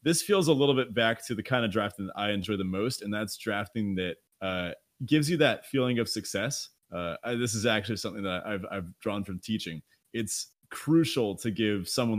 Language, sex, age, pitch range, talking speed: English, male, 30-49, 105-135 Hz, 210 wpm